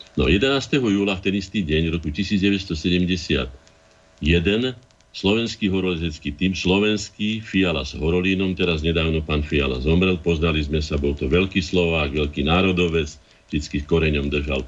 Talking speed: 135 wpm